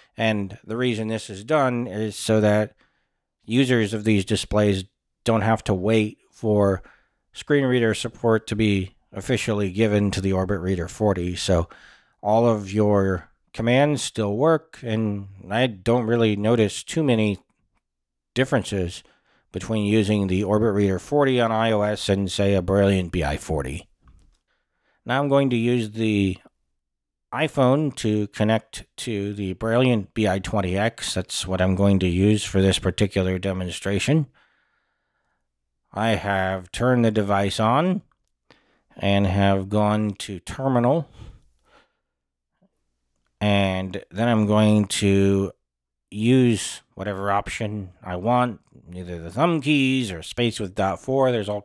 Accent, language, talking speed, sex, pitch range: American, English, 130 wpm, male, 95-115 Hz